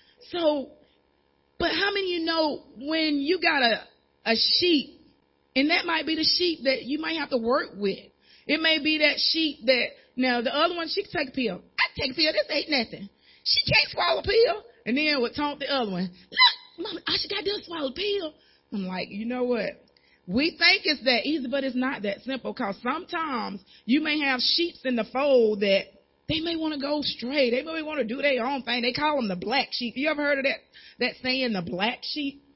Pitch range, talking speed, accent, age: 225-300 Hz, 230 wpm, American, 30-49